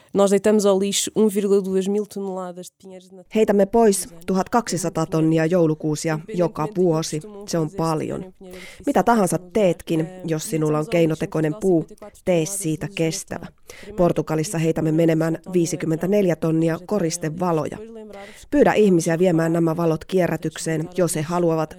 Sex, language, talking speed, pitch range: female, Finnish, 100 wpm, 160-185 Hz